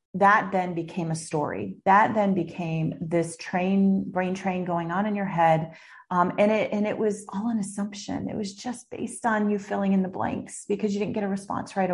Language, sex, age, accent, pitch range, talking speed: English, female, 30-49, American, 170-215 Hz, 215 wpm